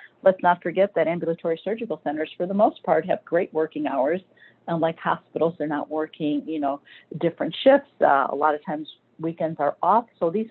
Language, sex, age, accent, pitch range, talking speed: English, female, 50-69, American, 155-190 Hz, 195 wpm